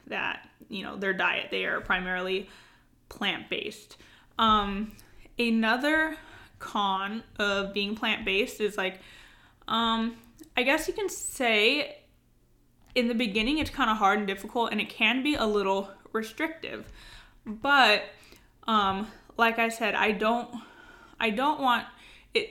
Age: 10-29